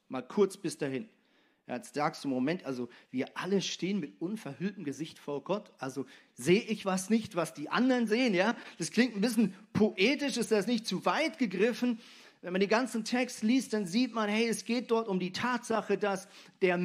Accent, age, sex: German, 40-59, male